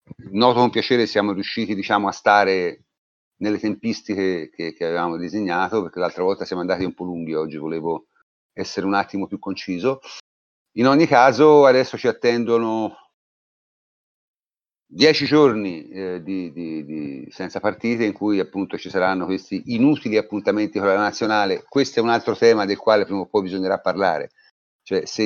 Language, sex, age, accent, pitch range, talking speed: Italian, male, 40-59, native, 95-115 Hz, 150 wpm